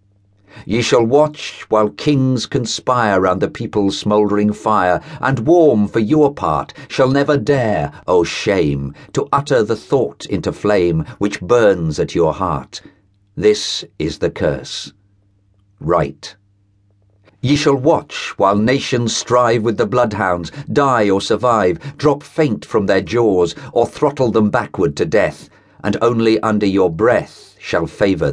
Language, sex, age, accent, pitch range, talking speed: English, male, 50-69, British, 100-130 Hz, 140 wpm